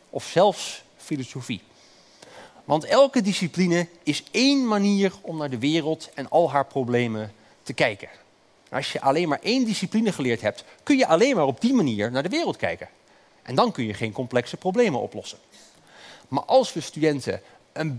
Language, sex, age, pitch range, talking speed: Dutch, male, 40-59, 130-195 Hz, 170 wpm